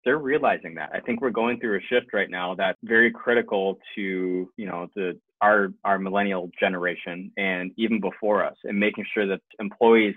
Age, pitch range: 20-39, 95-115 Hz